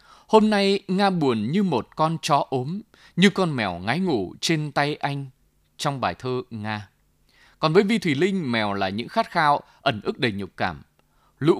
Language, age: Vietnamese, 20-39